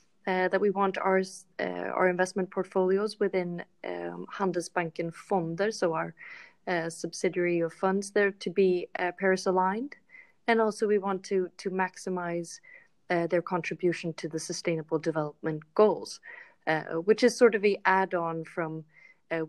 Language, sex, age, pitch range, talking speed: English, female, 30-49, 165-195 Hz, 150 wpm